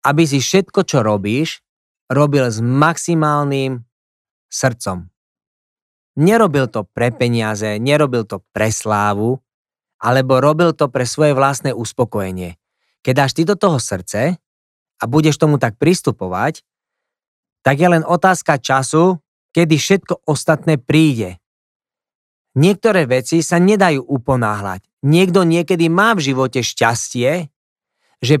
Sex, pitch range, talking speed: male, 125-170 Hz, 120 wpm